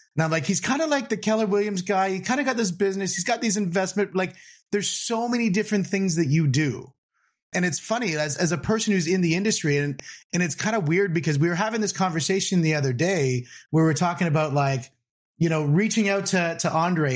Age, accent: 30-49, American